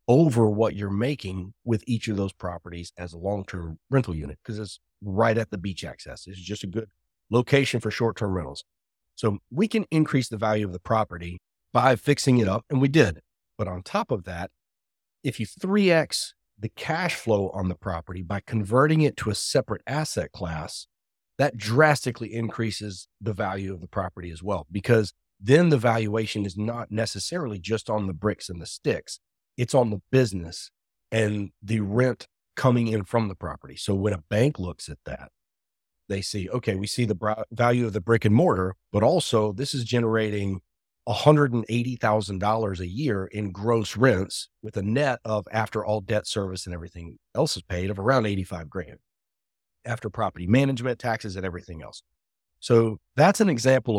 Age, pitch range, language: 40-59, 95-120 Hz, English